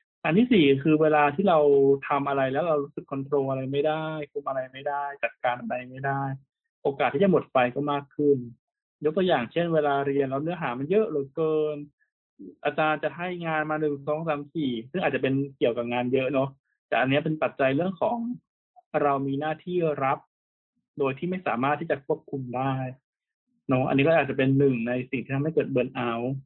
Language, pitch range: English, 135-155 Hz